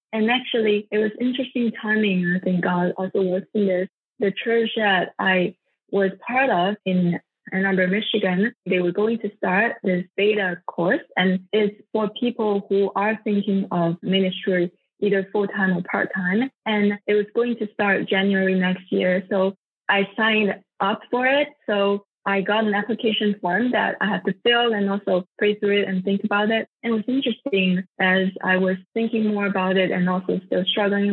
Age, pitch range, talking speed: 20-39, 185-215 Hz, 180 wpm